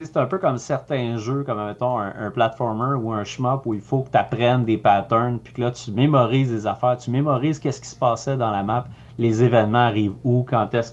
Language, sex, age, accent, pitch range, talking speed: French, male, 30-49, Canadian, 110-130 Hz, 240 wpm